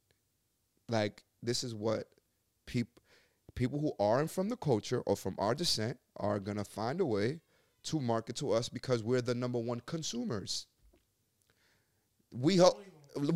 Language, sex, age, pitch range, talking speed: English, male, 30-49, 110-160 Hz, 145 wpm